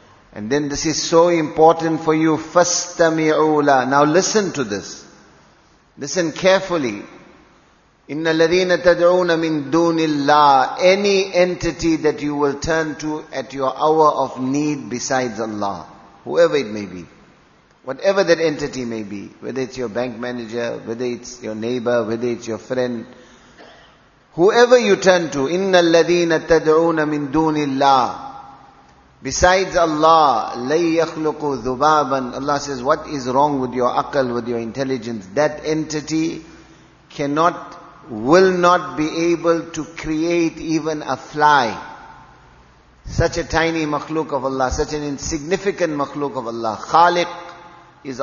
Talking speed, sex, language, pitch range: 120 wpm, male, English, 135-170 Hz